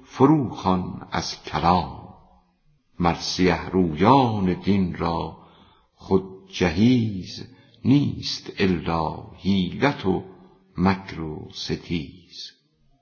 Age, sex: 50-69, female